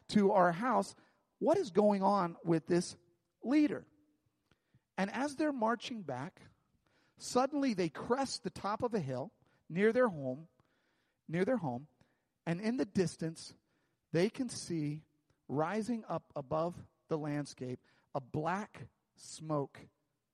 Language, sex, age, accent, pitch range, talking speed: English, male, 40-59, American, 145-210 Hz, 130 wpm